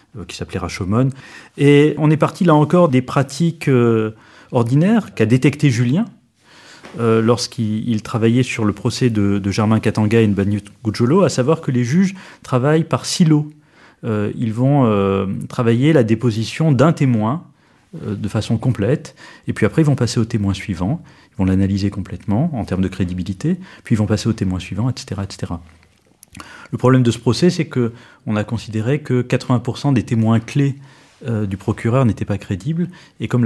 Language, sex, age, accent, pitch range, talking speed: French, male, 30-49, French, 105-145 Hz, 180 wpm